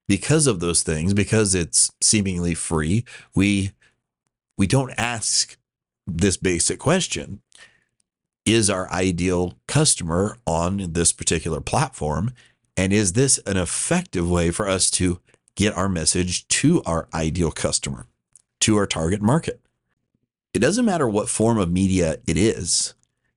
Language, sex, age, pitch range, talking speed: English, male, 40-59, 90-125 Hz, 135 wpm